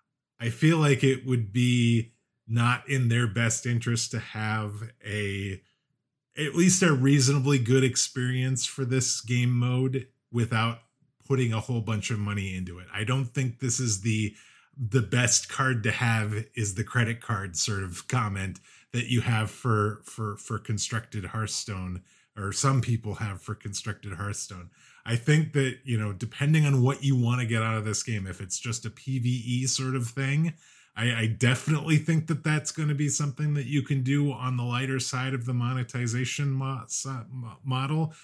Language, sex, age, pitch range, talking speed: English, male, 30-49, 115-135 Hz, 175 wpm